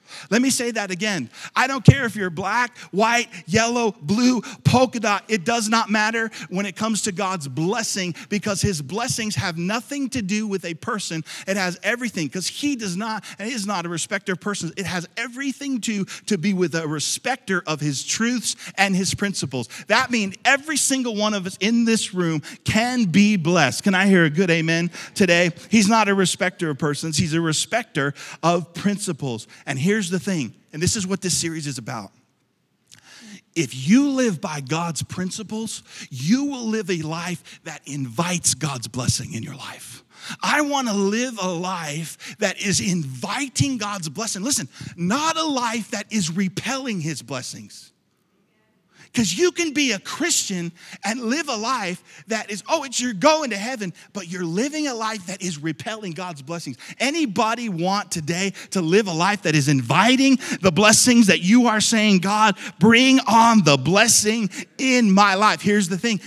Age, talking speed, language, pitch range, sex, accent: 40-59, 185 wpm, English, 170-225 Hz, male, American